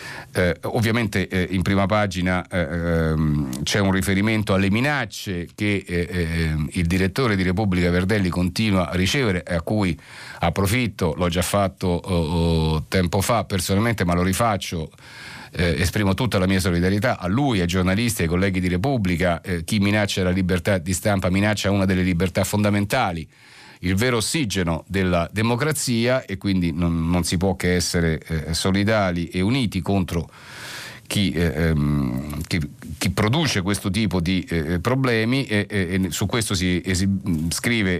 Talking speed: 155 wpm